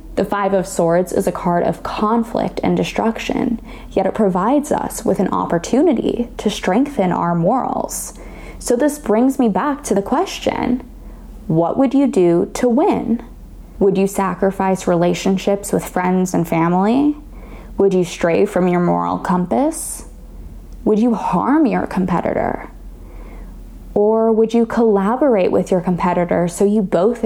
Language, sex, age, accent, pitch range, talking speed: English, female, 10-29, American, 180-245 Hz, 145 wpm